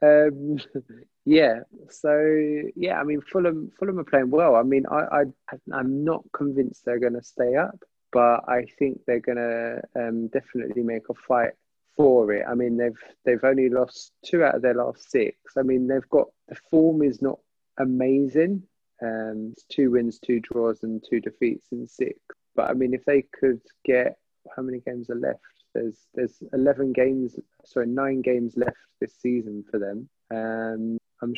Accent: British